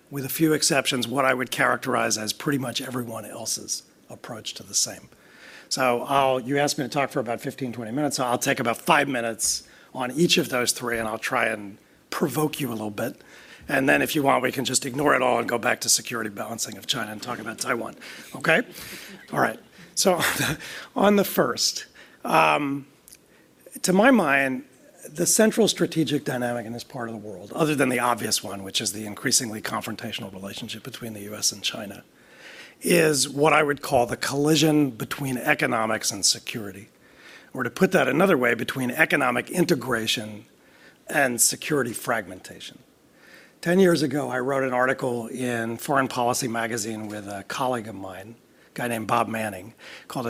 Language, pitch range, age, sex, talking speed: English, 115-145 Hz, 40-59, male, 185 wpm